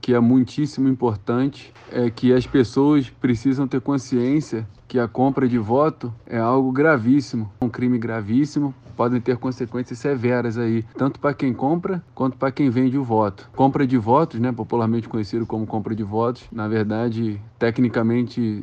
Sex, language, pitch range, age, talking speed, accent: male, Portuguese, 115-135 Hz, 20-39, 160 wpm, Brazilian